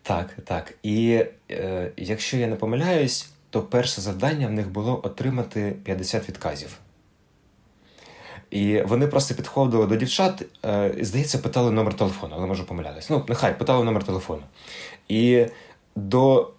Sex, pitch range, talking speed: male, 100-125 Hz, 140 wpm